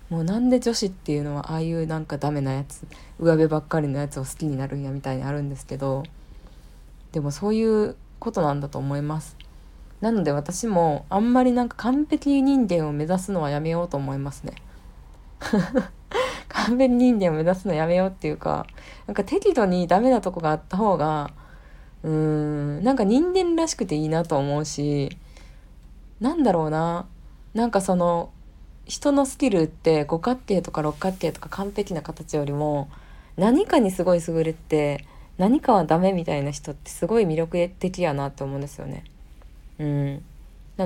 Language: Japanese